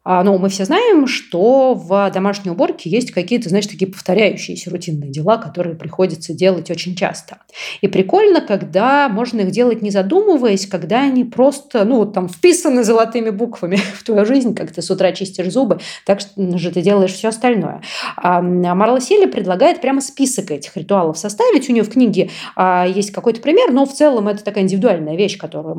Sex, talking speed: female, 175 wpm